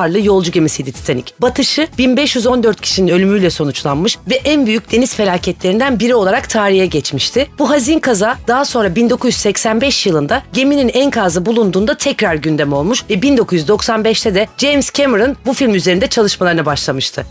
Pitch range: 185-255 Hz